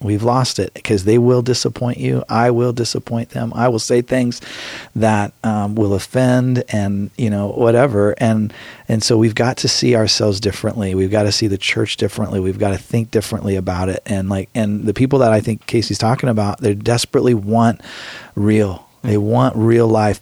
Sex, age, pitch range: male, 40-59, 105-125 Hz